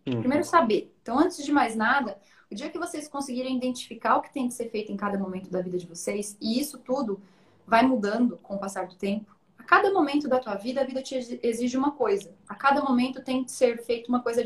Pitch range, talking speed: 225-290 Hz, 235 wpm